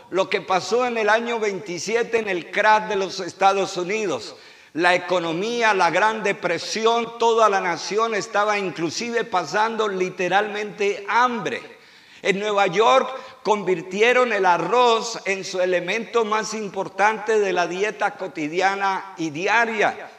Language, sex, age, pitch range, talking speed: Spanish, male, 50-69, 185-230 Hz, 130 wpm